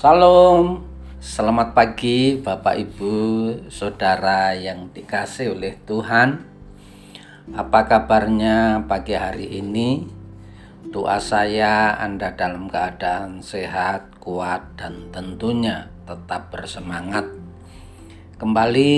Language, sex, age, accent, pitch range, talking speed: Indonesian, male, 40-59, native, 90-110 Hz, 85 wpm